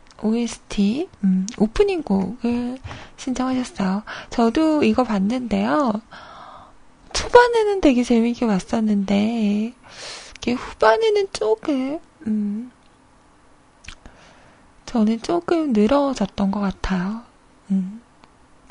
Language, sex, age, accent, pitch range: Korean, female, 20-39, native, 215-295 Hz